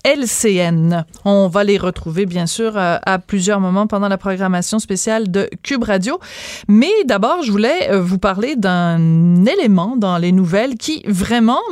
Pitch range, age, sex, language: 195-245 Hz, 30-49, female, French